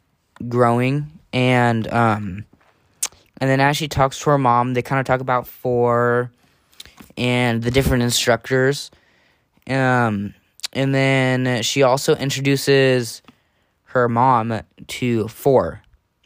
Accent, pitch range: American, 110-130 Hz